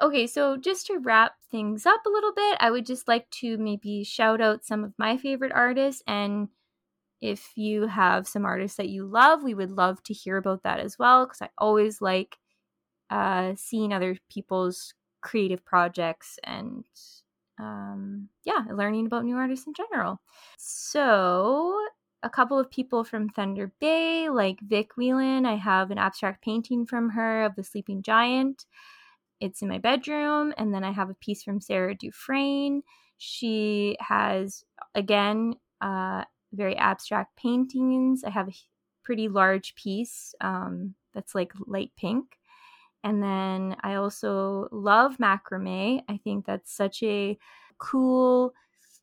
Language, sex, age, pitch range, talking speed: English, female, 10-29, 195-255 Hz, 155 wpm